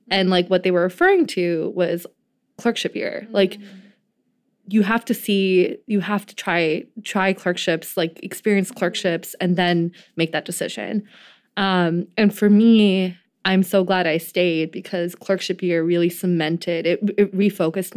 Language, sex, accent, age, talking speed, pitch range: English, female, American, 20-39, 160 wpm, 175-205 Hz